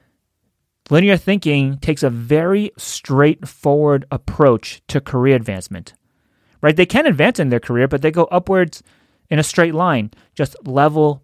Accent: American